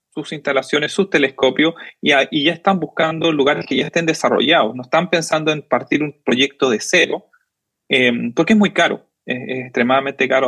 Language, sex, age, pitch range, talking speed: Spanish, male, 30-49, 135-165 Hz, 185 wpm